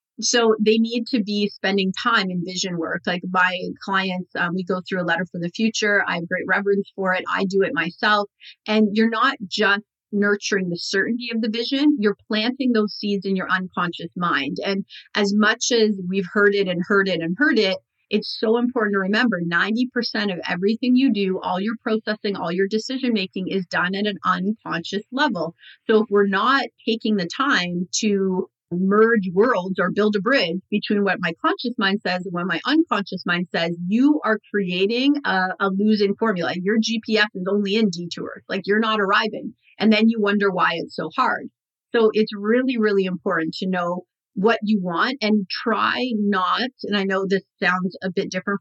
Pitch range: 185-225 Hz